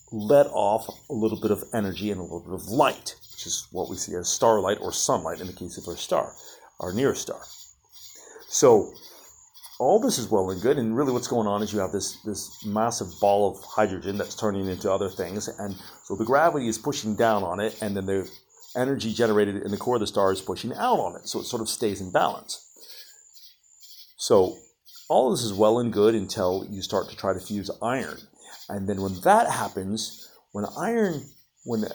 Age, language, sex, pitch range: 40-59, English, male, 100-125 Hz